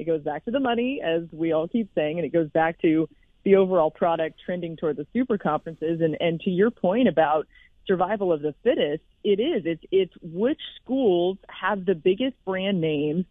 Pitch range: 180-250 Hz